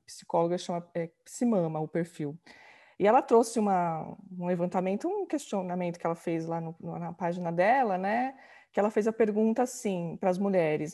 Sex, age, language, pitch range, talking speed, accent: female, 20-39, Portuguese, 185-240 Hz, 175 wpm, Brazilian